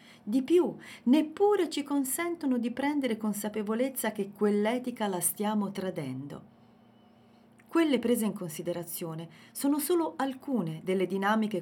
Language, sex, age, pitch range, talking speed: Italian, female, 40-59, 180-250 Hz, 115 wpm